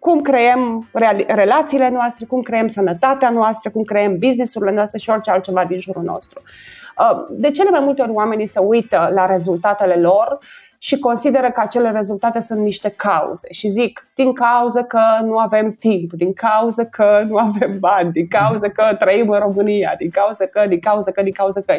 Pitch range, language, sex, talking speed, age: 200-255 Hz, Romanian, female, 180 wpm, 30-49